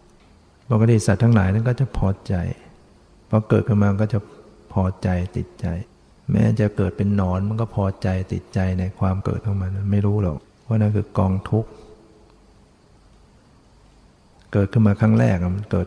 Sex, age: male, 60-79